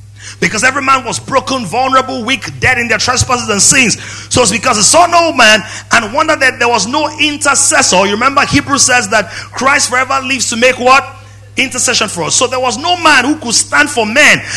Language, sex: English, male